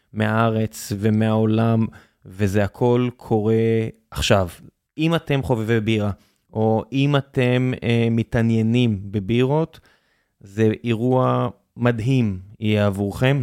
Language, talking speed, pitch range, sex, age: Hebrew, 95 wpm, 105-125 Hz, male, 20-39